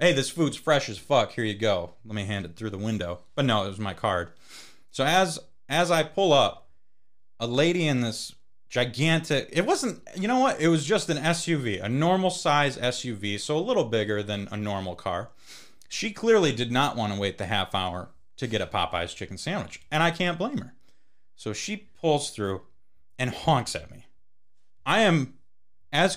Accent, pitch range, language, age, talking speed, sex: American, 95-155 Hz, English, 30-49, 200 wpm, male